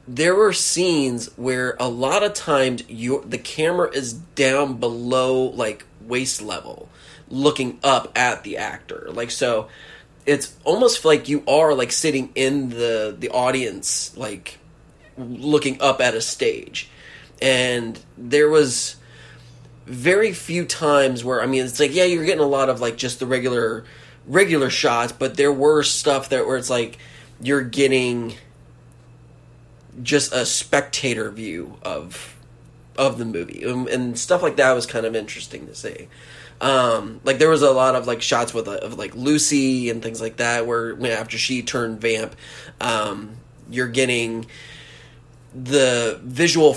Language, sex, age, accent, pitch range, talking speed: English, male, 20-39, American, 115-145 Hz, 150 wpm